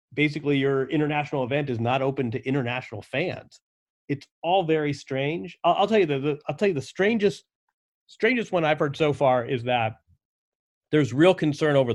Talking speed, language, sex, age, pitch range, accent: 185 wpm, English, male, 30-49, 140-180 Hz, American